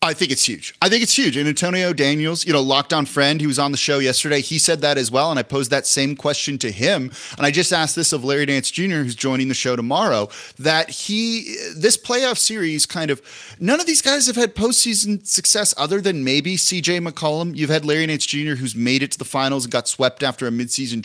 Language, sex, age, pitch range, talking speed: English, male, 30-49, 125-160 Hz, 245 wpm